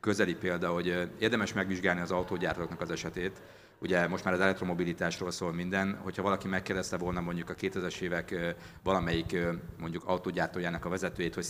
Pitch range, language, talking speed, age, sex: 85-95 Hz, Hungarian, 155 wpm, 50-69, male